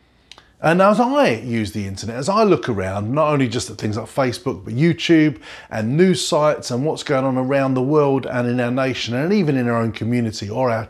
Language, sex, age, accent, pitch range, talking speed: English, male, 30-49, British, 115-170 Hz, 225 wpm